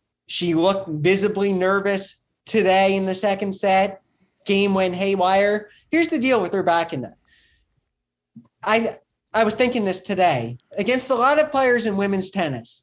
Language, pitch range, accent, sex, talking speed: English, 170-215 Hz, American, male, 145 wpm